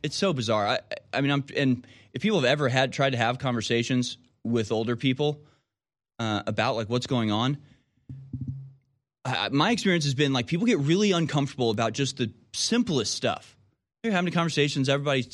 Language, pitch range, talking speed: English, 115-140 Hz, 175 wpm